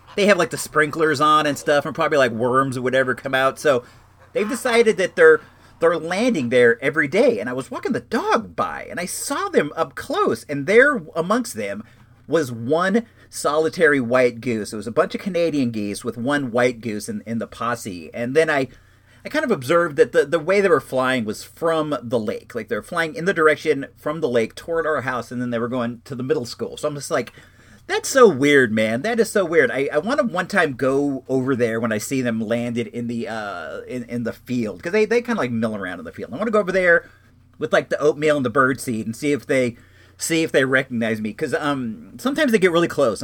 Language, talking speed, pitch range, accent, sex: English, 245 wpm, 120-175 Hz, American, male